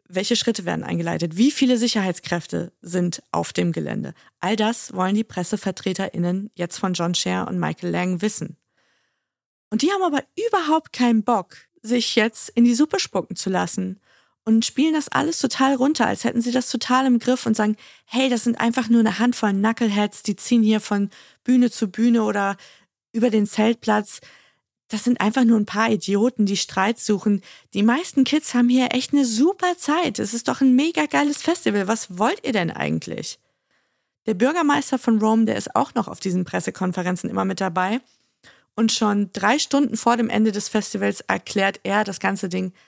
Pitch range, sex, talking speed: 190-245 Hz, female, 185 wpm